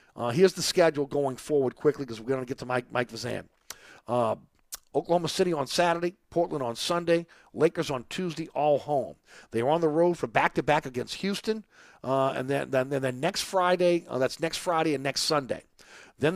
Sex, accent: male, American